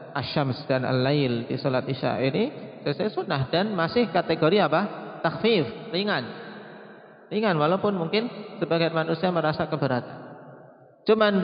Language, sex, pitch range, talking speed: Indonesian, male, 145-170 Hz, 125 wpm